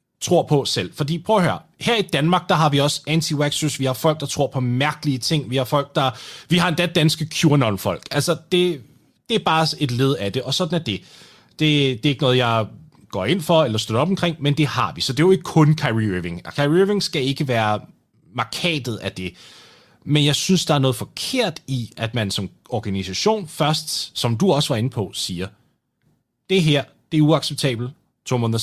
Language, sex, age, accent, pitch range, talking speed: Danish, male, 30-49, native, 110-160 Hz, 225 wpm